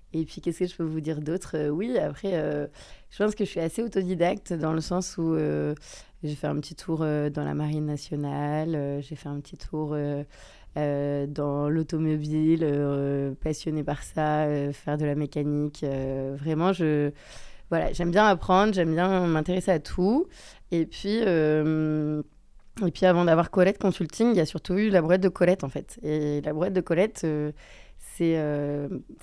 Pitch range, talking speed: 150-180 Hz, 190 wpm